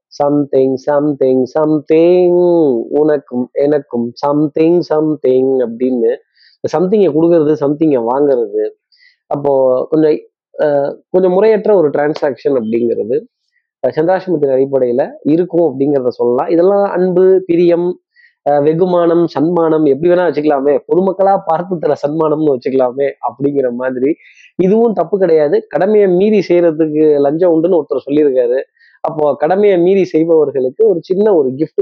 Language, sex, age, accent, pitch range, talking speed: Tamil, male, 20-39, native, 145-205 Hz, 110 wpm